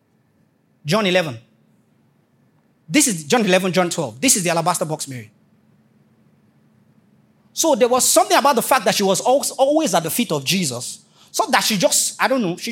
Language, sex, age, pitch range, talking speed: English, male, 30-49, 180-270 Hz, 180 wpm